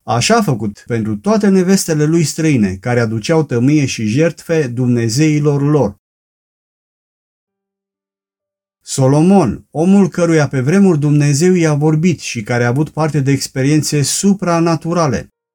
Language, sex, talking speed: Romanian, male, 120 wpm